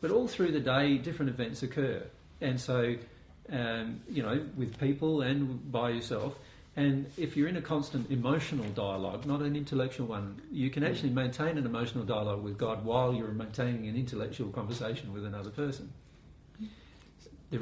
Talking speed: 165 wpm